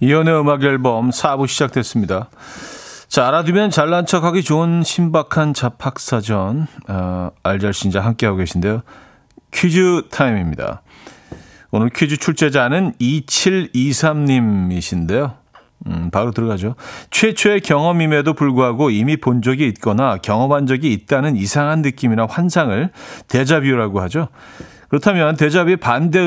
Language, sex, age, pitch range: Korean, male, 40-59, 110-155 Hz